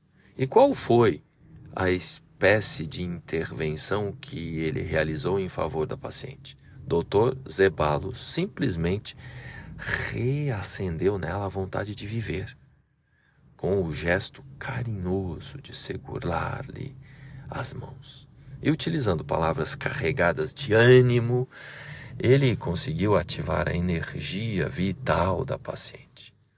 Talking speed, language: 100 wpm, Portuguese